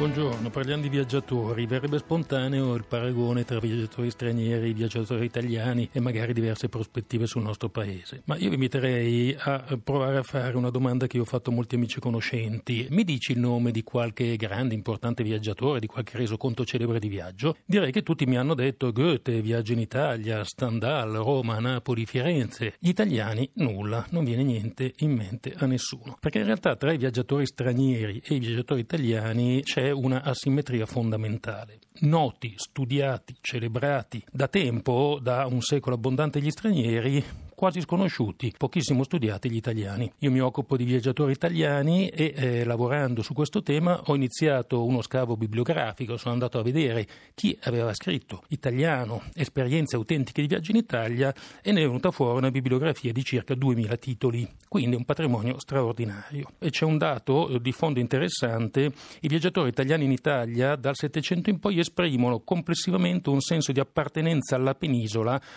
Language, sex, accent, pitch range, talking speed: Italian, male, native, 120-145 Hz, 165 wpm